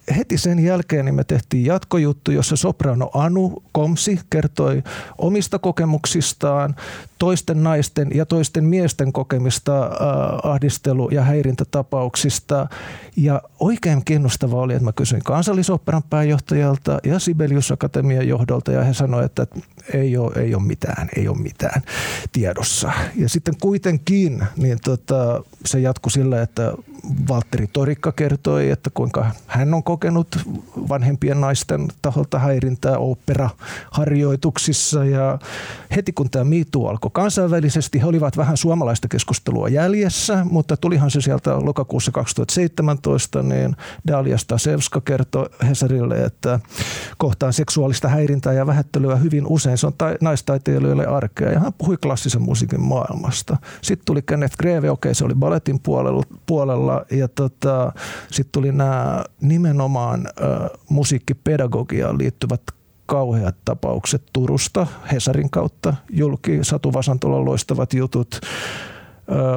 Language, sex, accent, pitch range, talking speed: Finnish, male, native, 130-155 Hz, 120 wpm